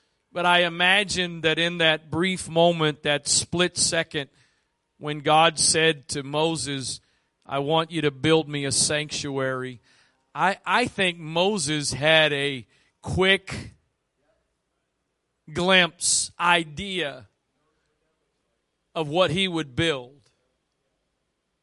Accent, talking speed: American, 105 wpm